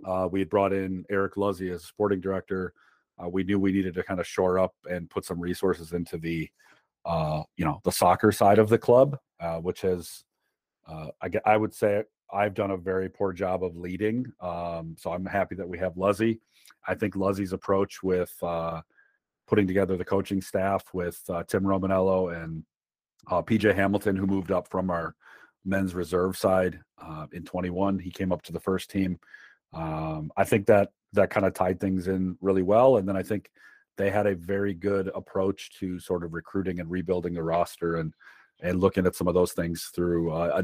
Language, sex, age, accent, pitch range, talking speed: English, male, 40-59, American, 85-100 Hz, 200 wpm